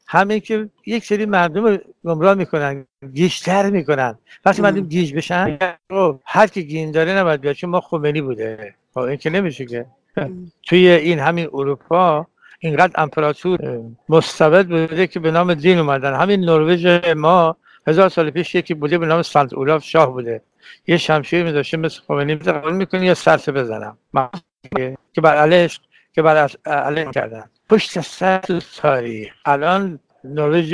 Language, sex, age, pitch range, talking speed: English, male, 60-79, 135-175 Hz, 145 wpm